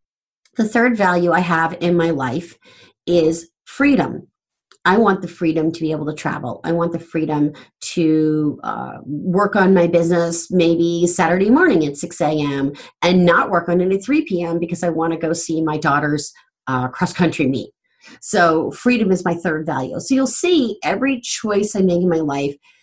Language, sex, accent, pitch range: English, female, American, 145-180 Hz